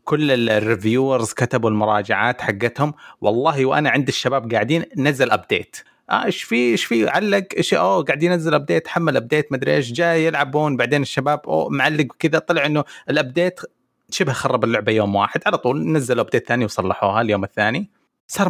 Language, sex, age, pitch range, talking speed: Arabic, male, 30-49, 115-150 Hz, 165 wpm